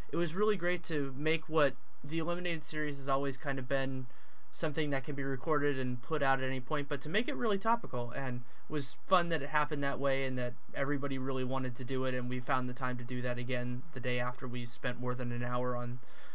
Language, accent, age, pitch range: English, American, 20-39, 125-155 Hz